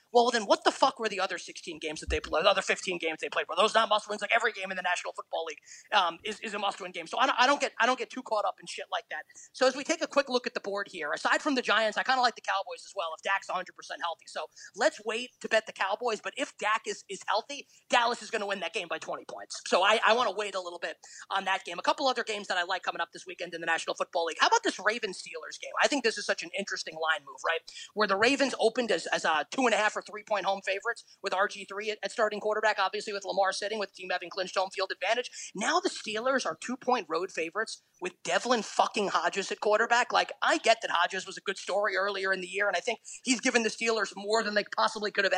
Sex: male